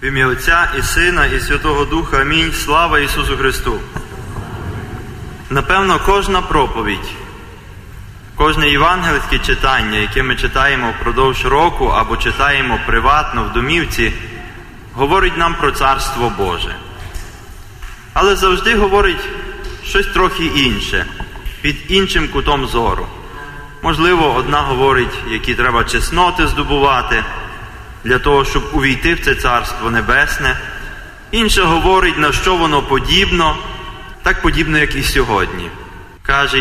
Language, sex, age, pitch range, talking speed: Ukrainian, male, 20-39, 110-165 Hz, 115 wpm